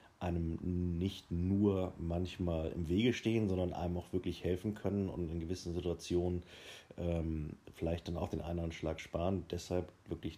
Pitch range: 85-95 Hz